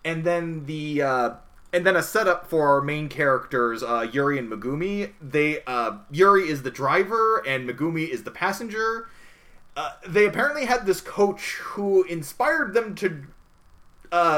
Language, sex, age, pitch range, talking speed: English, male, 30-49, 150-200 Hz, 160 wpm